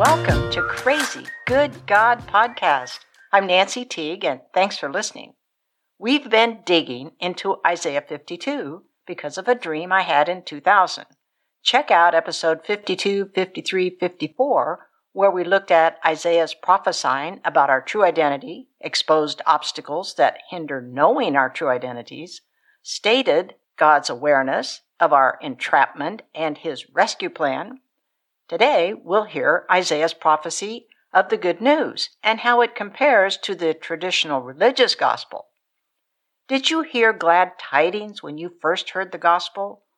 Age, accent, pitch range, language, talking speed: 60-79, American, 165-240 Hz, English, 135 wpm